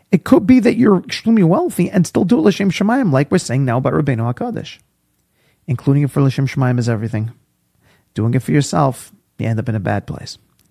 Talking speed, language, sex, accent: 205 wpm, English, male, American